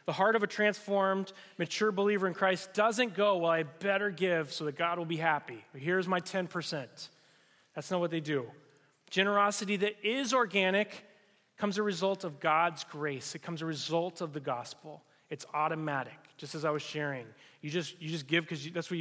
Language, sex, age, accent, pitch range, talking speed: English, male, 30-49, American, 145-180 Hz, 195 wpm